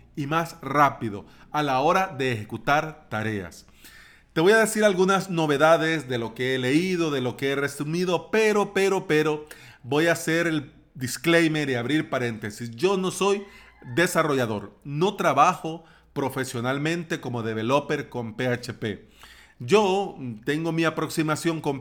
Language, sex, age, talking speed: Spanish, male, 40-59, 145 wpm